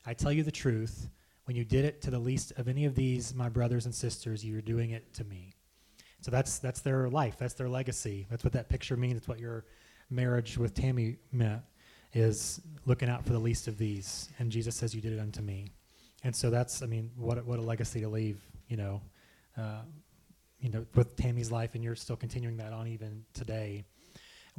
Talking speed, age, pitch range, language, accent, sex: 215 wpm, 20-39, 115-135 Hz, English, American, male